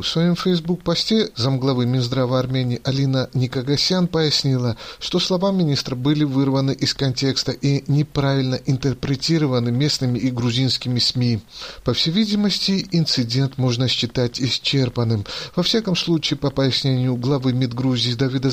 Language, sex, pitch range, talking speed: Russian, male, 130-150 Hz, 125 wpm